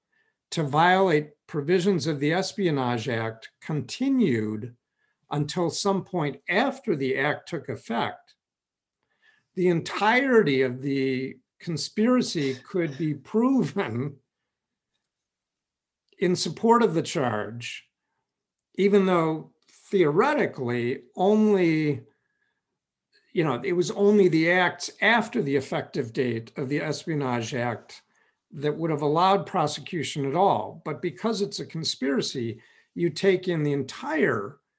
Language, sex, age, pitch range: English, male, 50-69, 135-200 Hz